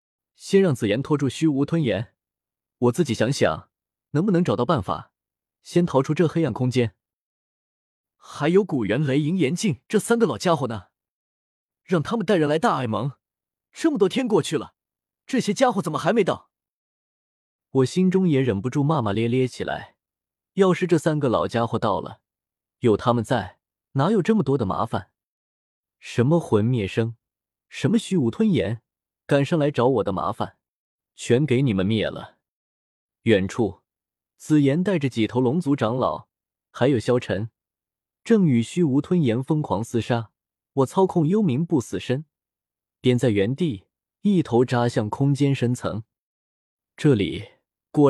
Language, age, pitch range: Chinese, 20-39, 115-170 Hz